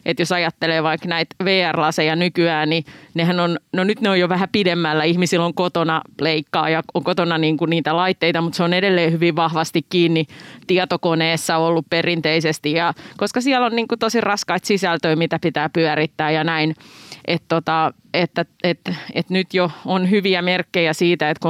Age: 30-49